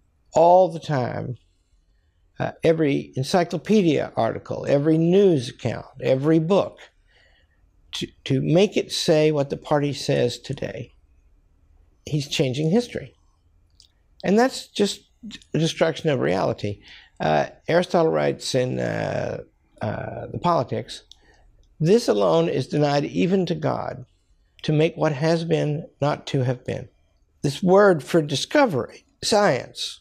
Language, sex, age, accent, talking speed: English, male, 60-79, American, 120 wpm